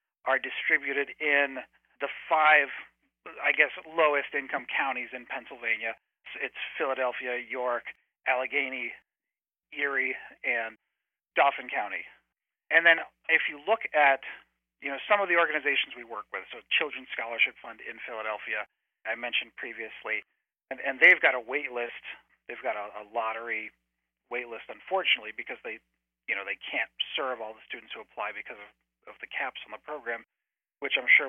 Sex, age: male, 40-59